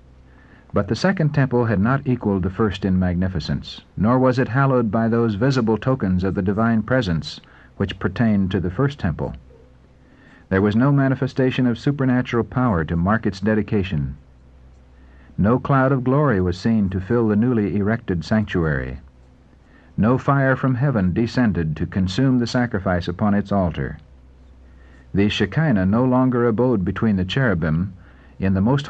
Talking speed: 155 wpm